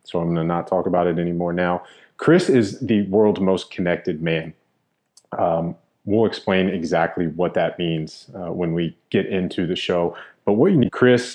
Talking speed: 190 wpm